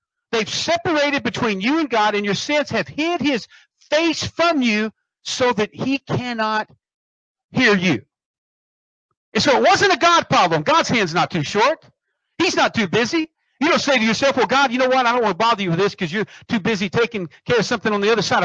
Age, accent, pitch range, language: 50-69, American, 205-285 Hz, English